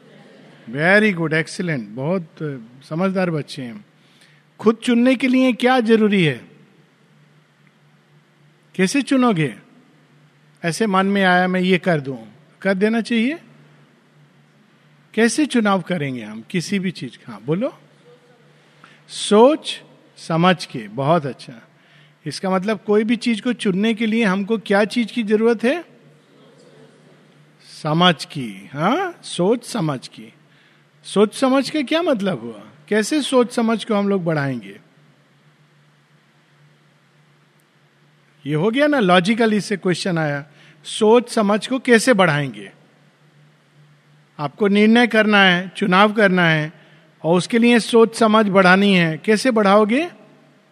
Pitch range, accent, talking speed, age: 155-230 Hz, native, 125 wpm, 50-69